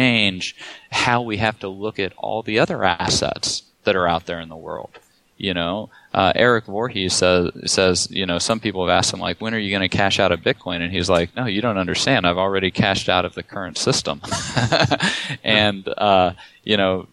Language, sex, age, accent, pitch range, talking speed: English, male, 20-39, American, 95-110 Hz, 215 wpm